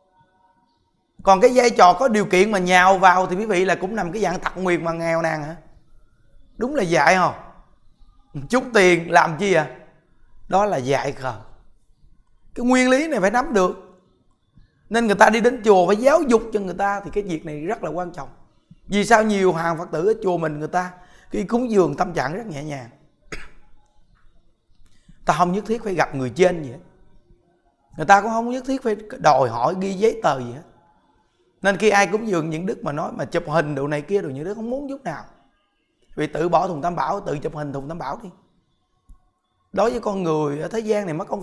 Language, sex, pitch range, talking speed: Vietnamese, male, 165-215 Hz, 220 wpm